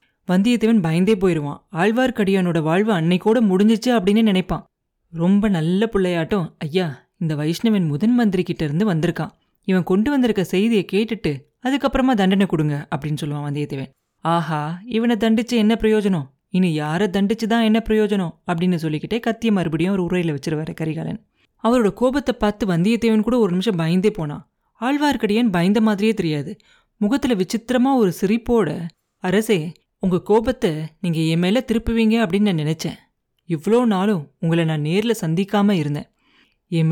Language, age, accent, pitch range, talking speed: Tamil, 30-49, native, 170-220 Hz, 130 wpm